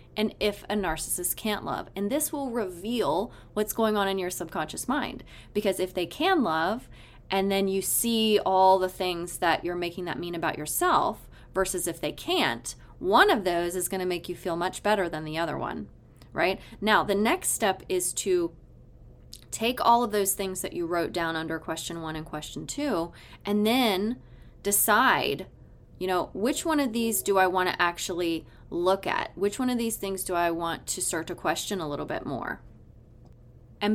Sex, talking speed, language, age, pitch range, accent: female, 195 wpm, English, 20-39, 170-205 Hz, American